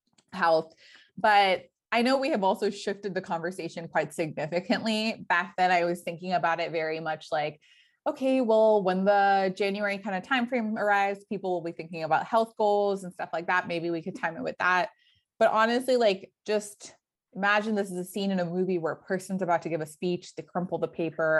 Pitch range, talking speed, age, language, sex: 175-220 Hz, 210 wpm, 20-39, English, female